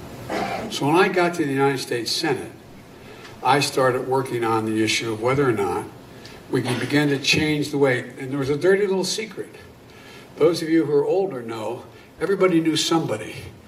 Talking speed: 190 wpm